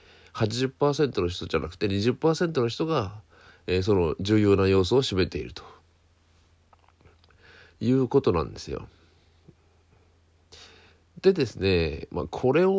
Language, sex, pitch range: Japanese, male, 85-125 Hz